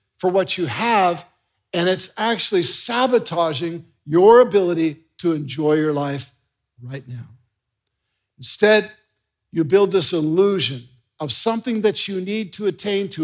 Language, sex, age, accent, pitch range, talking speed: English, male, 50-69, American, 150-205 Hz, 130 wpm